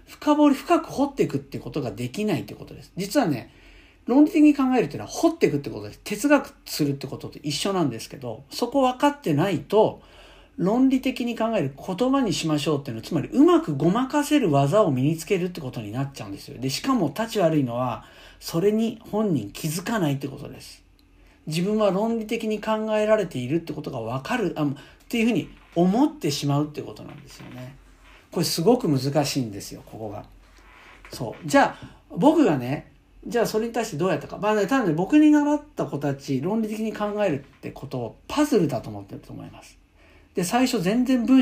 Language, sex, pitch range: Japanese, male, 140-230 Hz